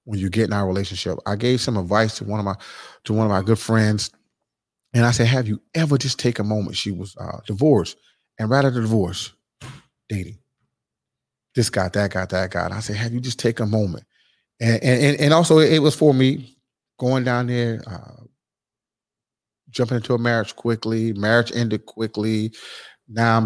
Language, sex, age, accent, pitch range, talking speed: English, male, 30-49, American, 105-120 Hz, 200 wpm